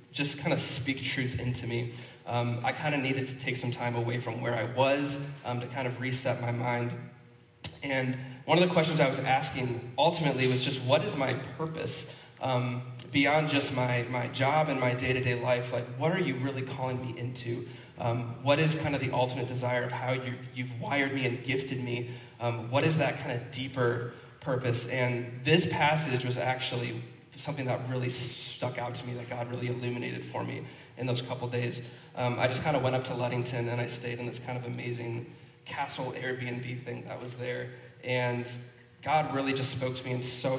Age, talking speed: 20-39, 205 wpm